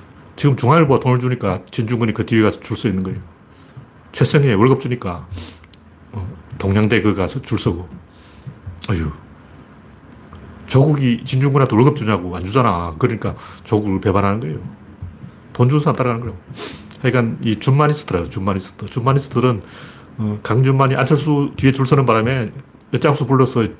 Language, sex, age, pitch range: Korean, male, 40-59, 100-140 Hz